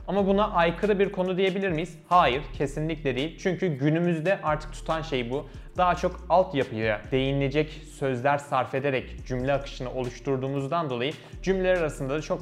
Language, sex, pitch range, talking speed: Turkish, male, 130-160 Hz, 150 wpm